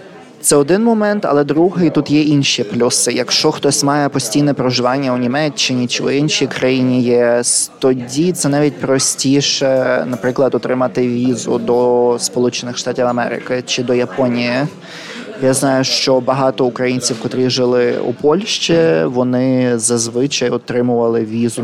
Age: 20-39